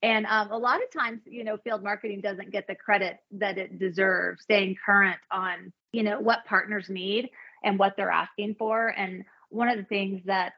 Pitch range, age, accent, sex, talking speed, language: 190-230 Hz, 30-49, American, female, 205 wpm, English